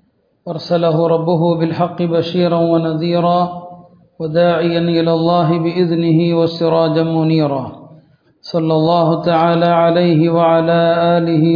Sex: male